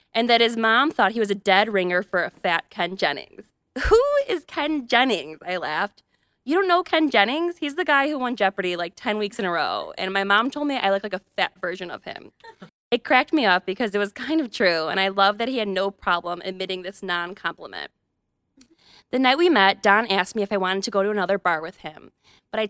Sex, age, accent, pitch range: female, 20-39, American, 185-255 Hz